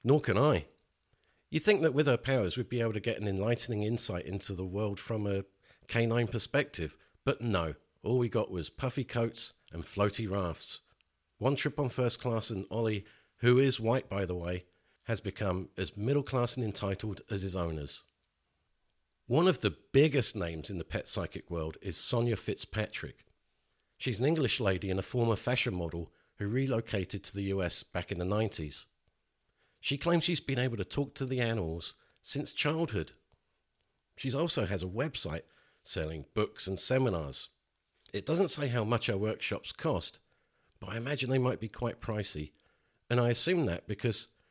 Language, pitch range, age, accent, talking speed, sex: English, 95-125 Hz, 50-69, British, 175 wpm, male